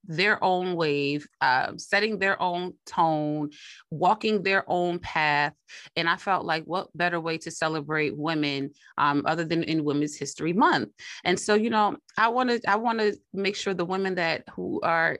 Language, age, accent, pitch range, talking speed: English, 30-49, American, 150-195 Hz, 180 wpm